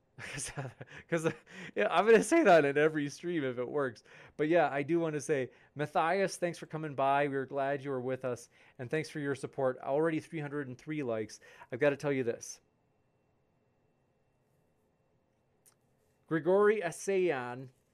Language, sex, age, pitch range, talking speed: English, male, 30-49, 125-155 Hz, 150 wpm